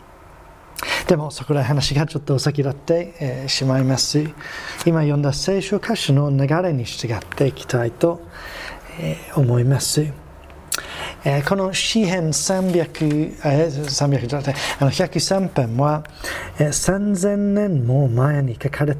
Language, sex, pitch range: Japanese, male, 125-155 Hz